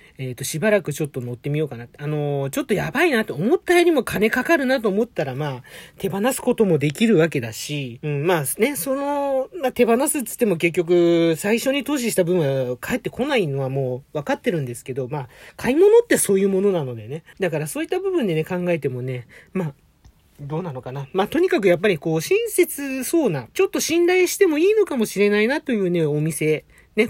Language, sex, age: Japanese, male, 40-59